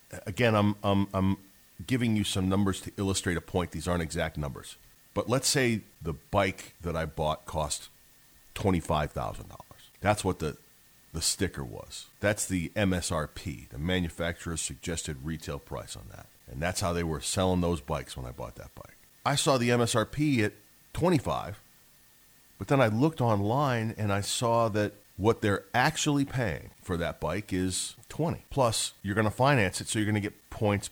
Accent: American